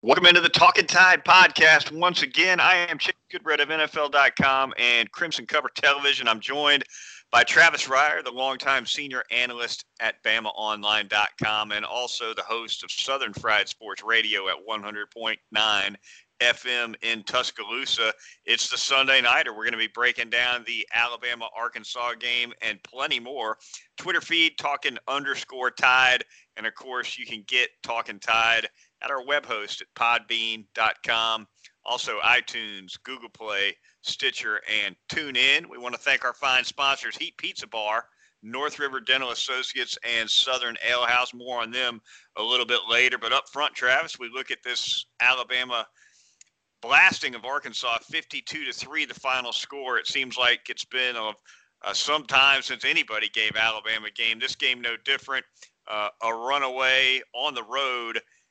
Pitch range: 115-135 Hz